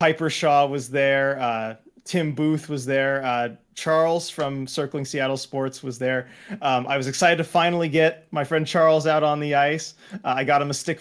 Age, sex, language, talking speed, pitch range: 30-49, male, English, 200 wpm, 135-175 Hz